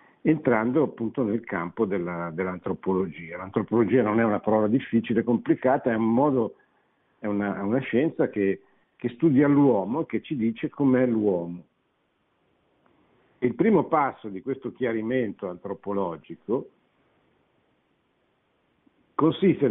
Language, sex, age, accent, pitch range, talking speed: Italian, male, 50-69, native, 100-135 Hz, 115 wpm